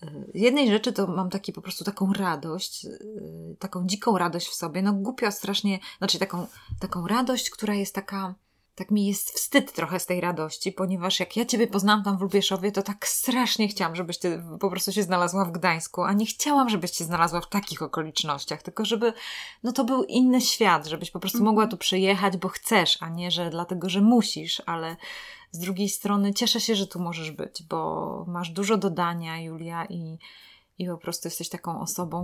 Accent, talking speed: native, 190 wpm